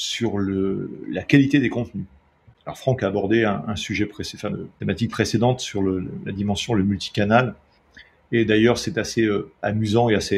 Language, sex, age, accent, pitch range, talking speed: French, male, 40-59, French, 100-125 Hz, 185 wpm